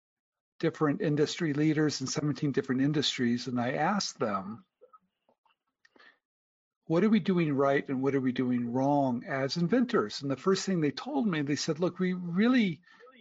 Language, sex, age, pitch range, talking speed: English, male, 50-69, 135-195 Hz, 165 wpm